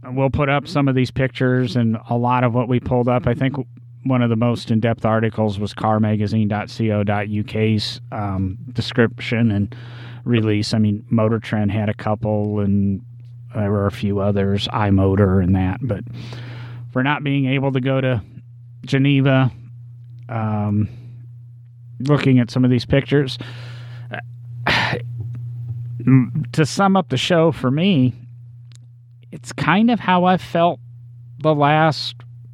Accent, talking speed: American, 140 wpm